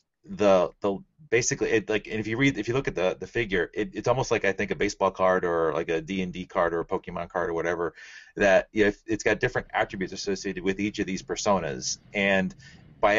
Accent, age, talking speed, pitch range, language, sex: American, 30-49, 245 wpm, 90-105 Hz, English, male